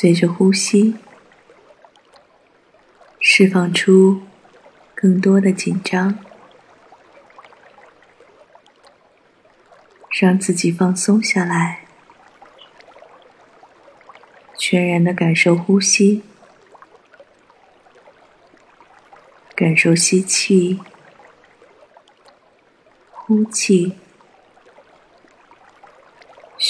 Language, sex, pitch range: Chinese, female, 180-200 Hz